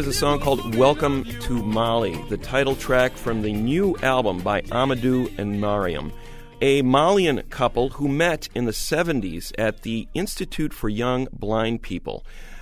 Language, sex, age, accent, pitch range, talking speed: English, male, 40-59, American, 110-140 Hz, 155 wpm